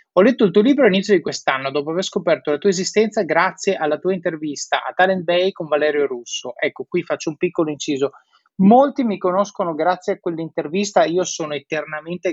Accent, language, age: native, Italian, 30-49